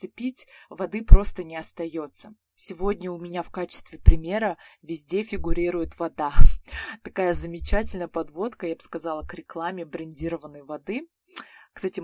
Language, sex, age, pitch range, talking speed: Russian, female, 20-39, 170-210 Hz, 130 wpm